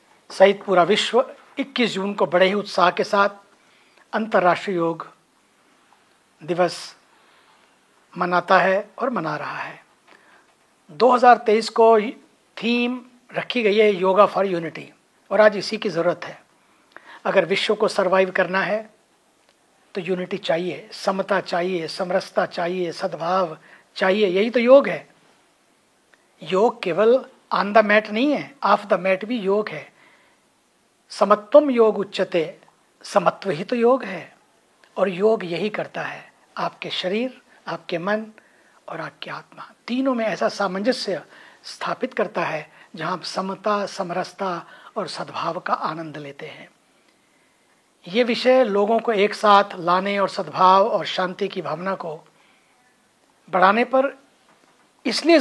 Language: English